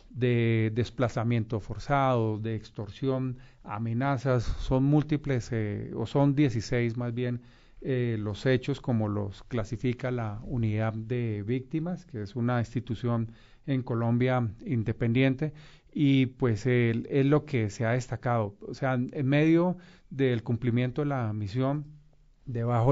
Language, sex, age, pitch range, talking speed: Spanish, male, 40-59, 115-135 Hz, 130 wpm